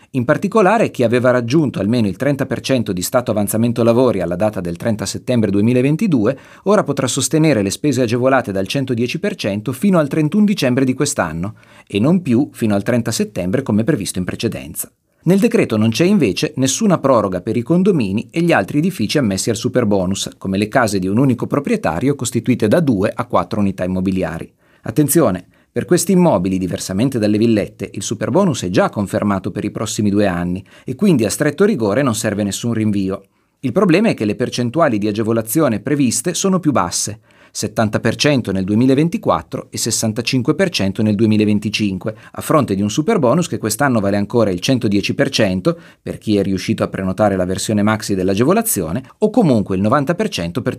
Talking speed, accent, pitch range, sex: 170 wpm, native, 105-145 Hz, male